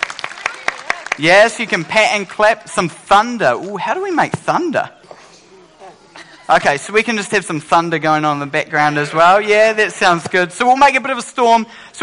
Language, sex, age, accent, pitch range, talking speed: English, male, 30-49, Australian, 180-265 Hz, 220 wpm